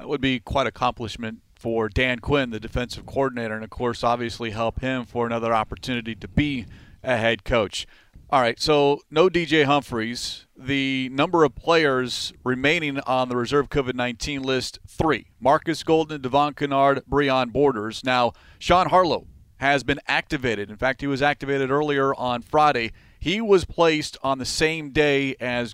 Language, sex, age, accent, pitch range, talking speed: English, male, 40-59, American, 120-150 Hz, 165 wpm